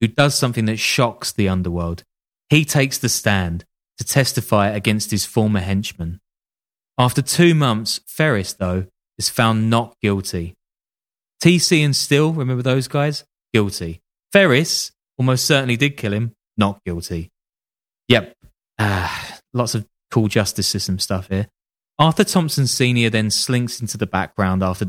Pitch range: 95-130 Hz